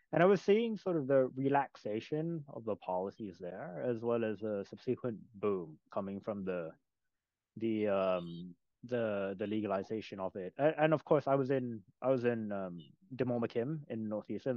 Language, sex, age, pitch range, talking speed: English, male, 20-39, 110-140 Hz, 170 wpm